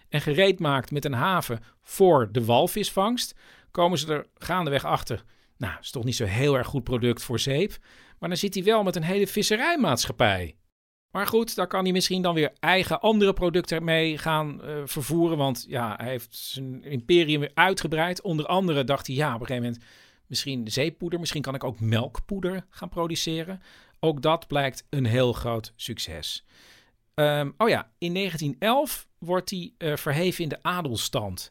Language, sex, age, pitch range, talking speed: Dutch, male, 50-69, 115-175 Hz, 175 wpm